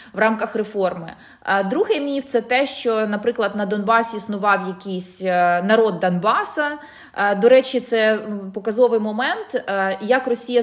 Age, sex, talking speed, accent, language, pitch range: 20-39, female, 130 wpm, native, Ukrainian, 205-260 Hz